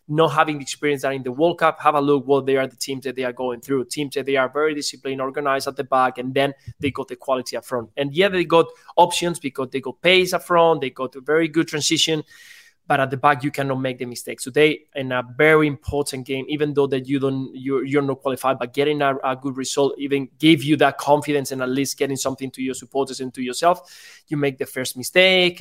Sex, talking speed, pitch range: male, 255 wpm, 130-155 Hz